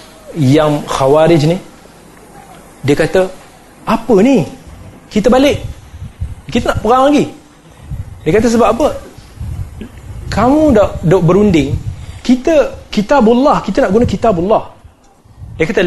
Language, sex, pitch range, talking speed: Malay, male, 135-215 Hz, 105 wpm